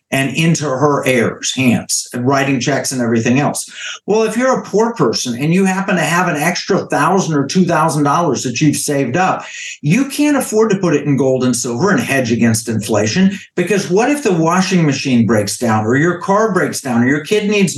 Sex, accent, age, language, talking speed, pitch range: male, American, 50-69, English, 210 wpm, 145-200 Hz